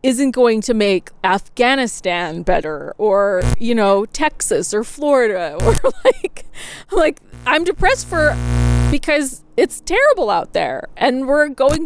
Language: English